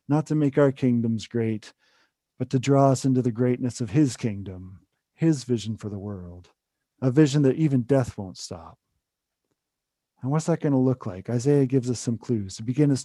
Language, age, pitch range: English, 40-59, 120-160 Hz